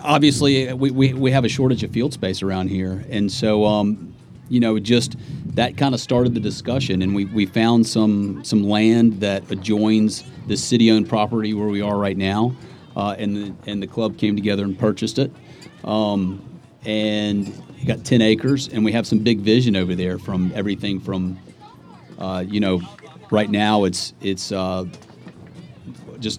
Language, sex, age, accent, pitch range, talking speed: English, male, 40-59, American, 95-115 Hz, 175 wpm